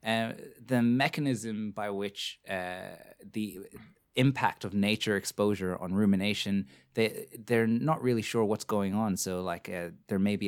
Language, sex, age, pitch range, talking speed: English, male, 30-49, 95-120 Hz, 160 wpm